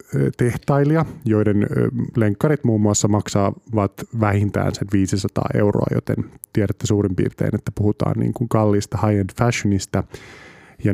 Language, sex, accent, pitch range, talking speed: Finnish, male, native, 100-120 Hz, 115 wpm